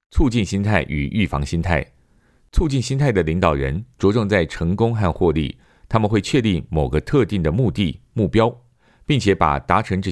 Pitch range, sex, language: 80-110 Hz, male, Chinese